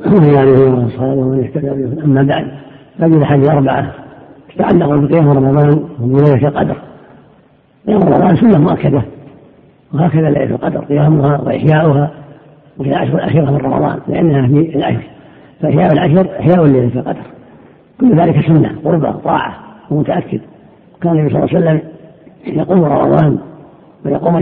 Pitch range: 140-170 Hz